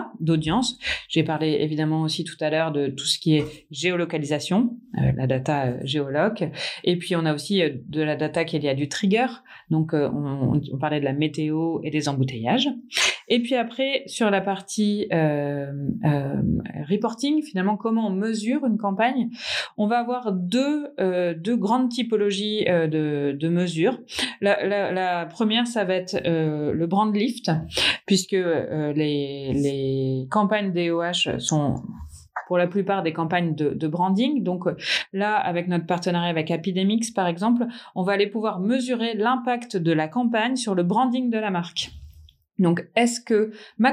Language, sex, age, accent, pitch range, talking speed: French, female, 30-49, French, 155-215 Hz, 165 wpm